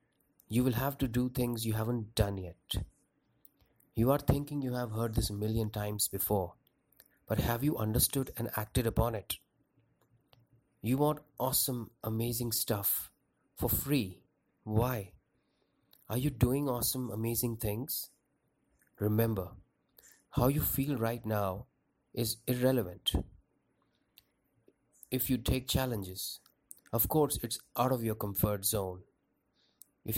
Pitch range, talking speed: 105-130 Hz, 125 wpm